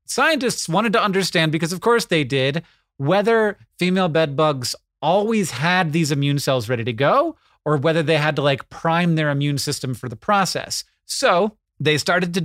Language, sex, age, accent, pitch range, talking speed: English, male, 30-49, American, 135-170 Hz, 185 wpm